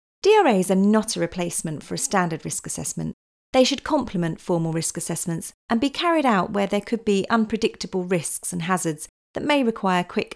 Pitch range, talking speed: 170-220 Hz, 185 wpm